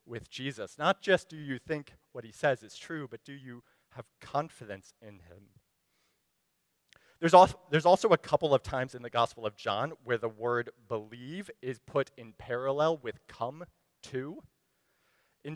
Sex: male